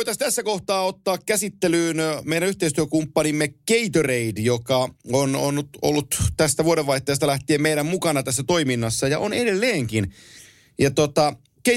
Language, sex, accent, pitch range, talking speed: Finnish, male, native, 125-170 Hz, 110 wpm